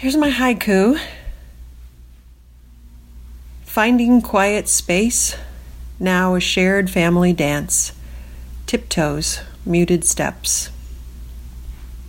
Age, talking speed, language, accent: 40-59, 70 wpm, English, American